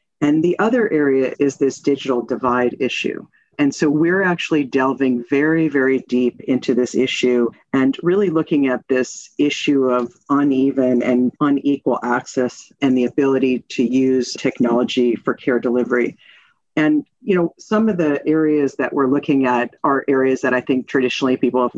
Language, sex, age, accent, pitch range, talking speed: English, female, 50-69, American, 125-145 Hz, 165 wpm